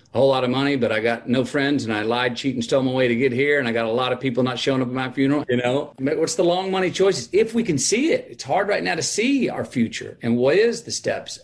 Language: English